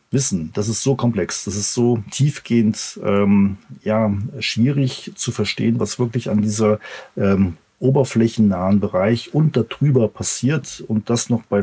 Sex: male